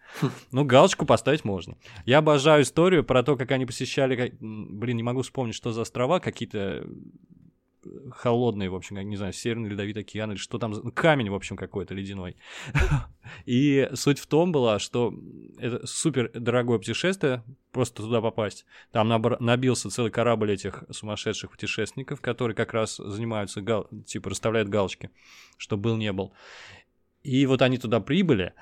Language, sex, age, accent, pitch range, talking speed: Russian, male, 20-39, native, 105-130 Hz, 155 wpm